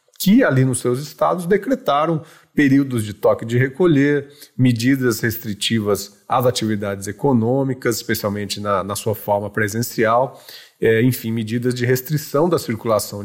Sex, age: male, 40-59